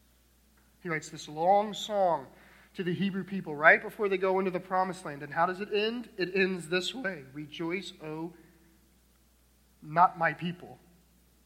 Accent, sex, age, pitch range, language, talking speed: American, male, 40-59, 155-215 Hz, English, 170 wpm